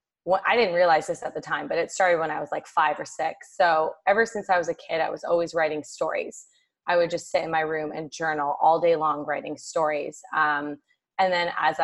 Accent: American